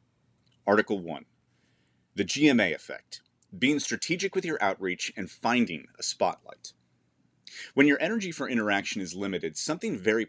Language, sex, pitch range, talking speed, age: English, male, 95-150 Hz, 135 wpm, 30-49